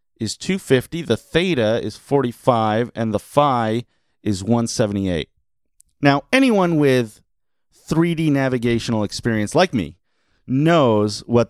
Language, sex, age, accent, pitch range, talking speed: English, male, 30-49, American, 105-140 Hz, 110 wpm